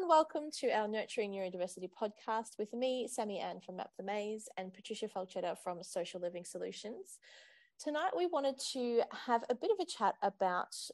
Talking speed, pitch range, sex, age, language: 175 wpm, 185-245 Hz, female, 20-39, English